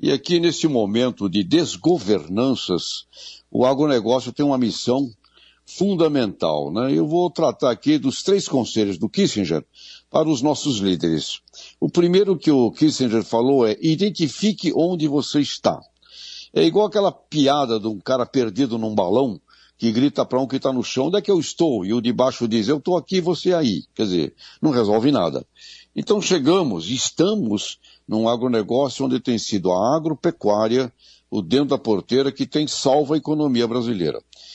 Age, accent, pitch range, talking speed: 70-89, Brazilian, 115-160 Hz, 165 wpm